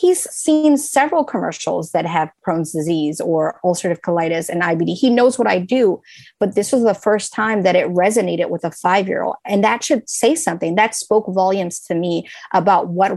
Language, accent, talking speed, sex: English, American, 190 wpm, female